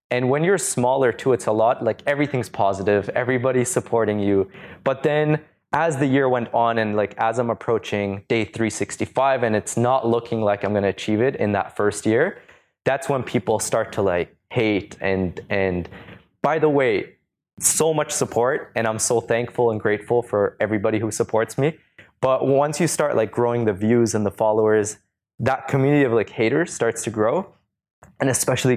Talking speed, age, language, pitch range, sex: 185 wpm, 20-39, English, 100-130 Hz, male